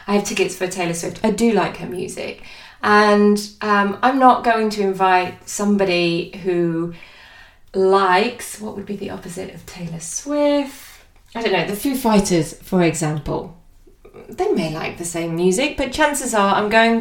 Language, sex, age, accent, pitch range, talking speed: English, female, 20-39, British, 180-230 Hz, 170 wpm